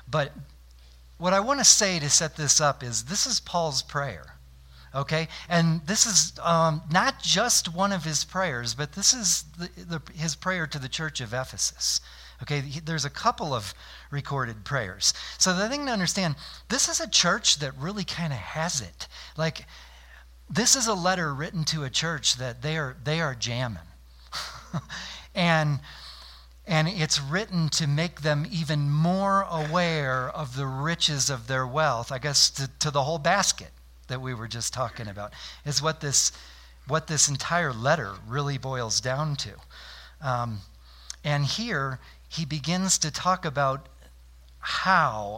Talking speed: 165 wpm